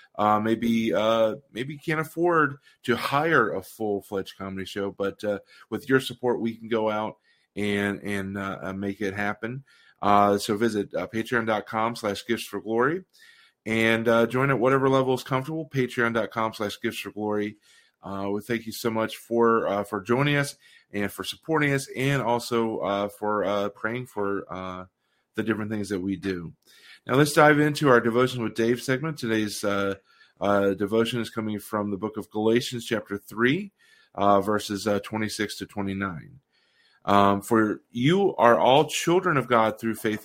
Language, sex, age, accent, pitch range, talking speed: English, male, 30-49, American, 100-125 Hz, 175 wpm